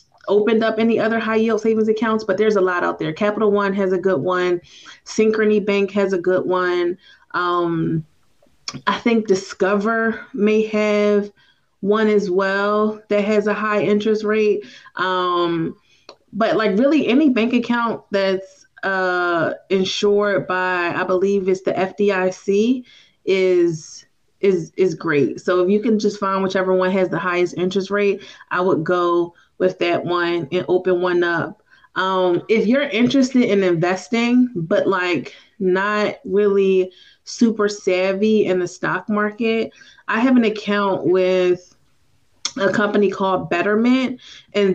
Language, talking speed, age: English, 150 wpm, 20-39